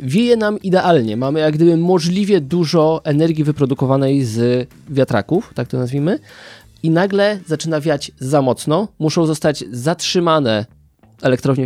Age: 20-39